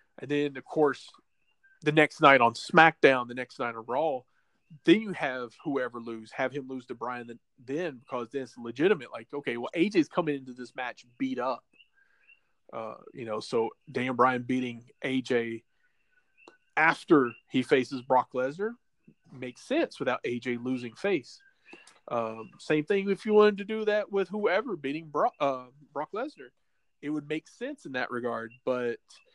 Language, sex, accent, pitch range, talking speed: English, male, American, 125-180 Hz, 170 wpm